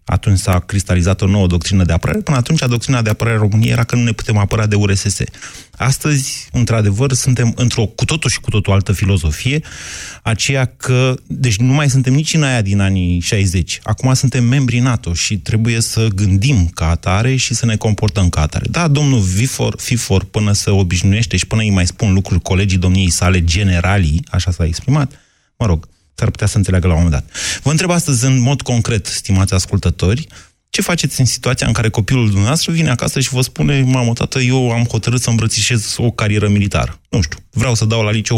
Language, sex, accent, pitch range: Romanian, male, native, 95-125 Hz